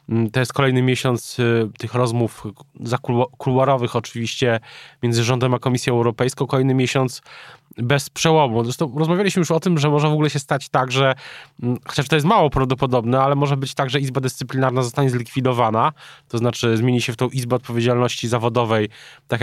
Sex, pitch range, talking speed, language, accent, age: male, 125-145 Hz, 165 wpm, Polish, native, 20-39